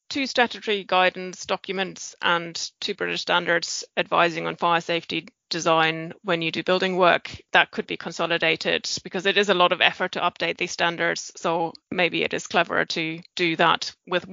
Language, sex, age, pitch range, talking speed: English, female, 20-39, 170-195 Hz, 175 wpm